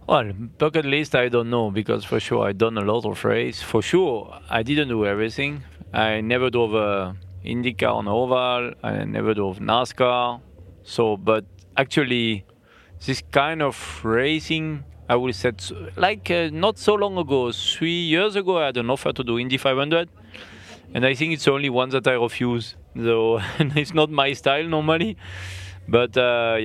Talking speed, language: 170 wpm, English